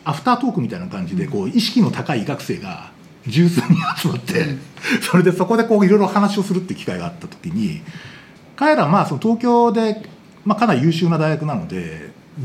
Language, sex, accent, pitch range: Japanese, male, native, 170-225 Hz